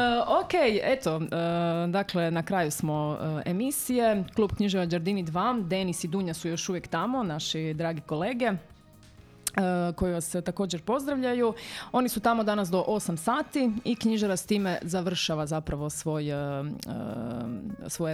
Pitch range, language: 150-195 Hz, Croatian